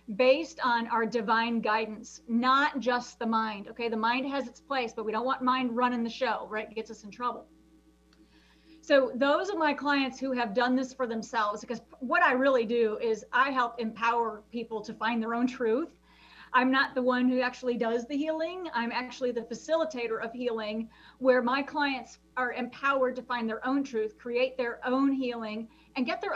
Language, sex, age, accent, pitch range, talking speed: English, female, 40-59, American, 230-265 Hz, 200 wpm